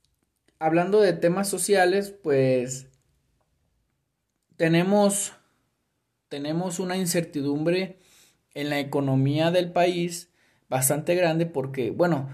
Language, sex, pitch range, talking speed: Spanish, male, 135-175 Hz, 90 wpm